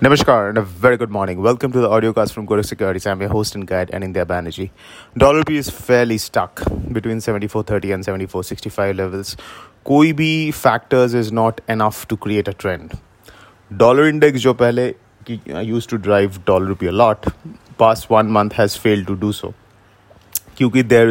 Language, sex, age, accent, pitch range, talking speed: English, male, 30-49, Indian, 100-120 Hz, 180 wpm